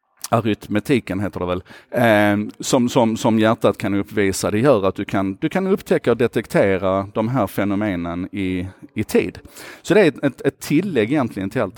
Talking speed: 190 wpm